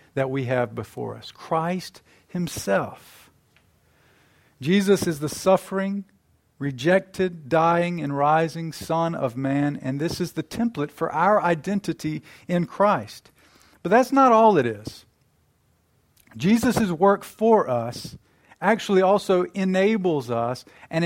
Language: English